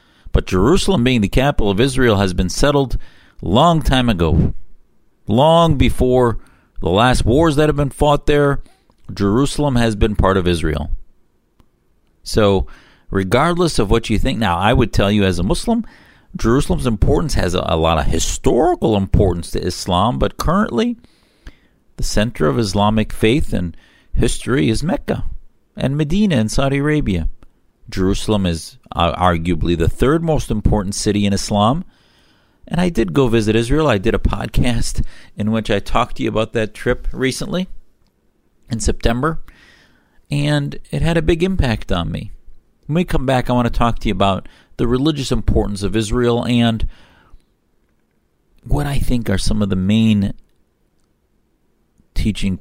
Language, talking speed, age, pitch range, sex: English, 155 wpm, 50-69, 95-135 Hz, male